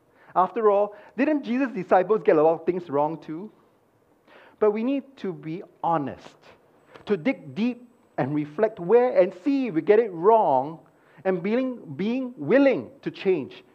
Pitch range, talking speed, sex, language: 160-235 Hz, 160 wpm, male, English